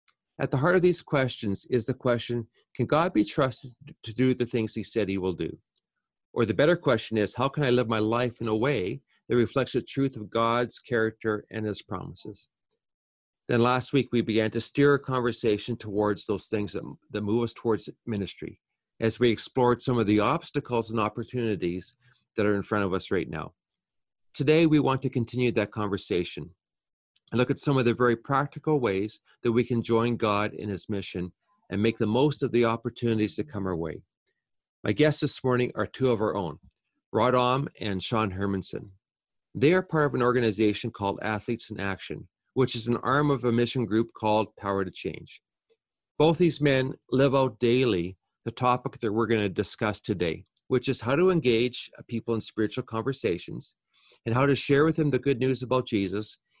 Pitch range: 105-130 Hz